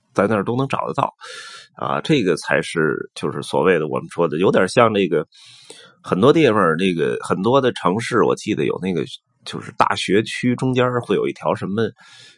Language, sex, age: Chinese, male, 20-39